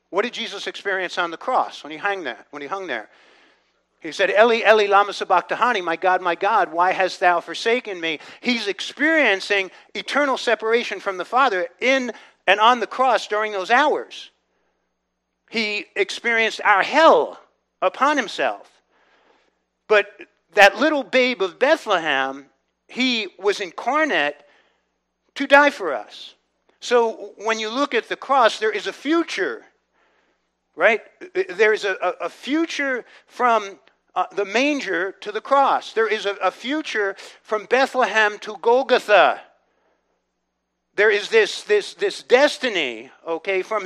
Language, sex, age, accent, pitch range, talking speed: English, male, 50-69, American, 190-275 Hz, 145 wpm